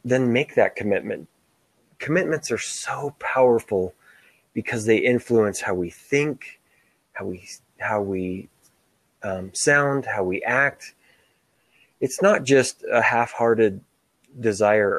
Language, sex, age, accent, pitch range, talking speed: English, male, 20-39, American, 100-125 Hz, 120 wpm